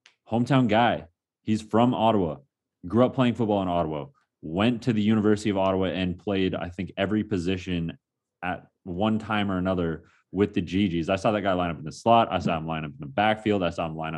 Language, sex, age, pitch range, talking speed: English, male, 30-49, 90-110 Hz, 220 wpm